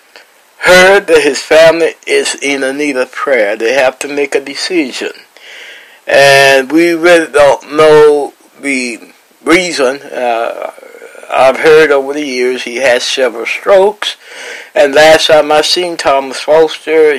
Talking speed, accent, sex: 140 wpm, American, male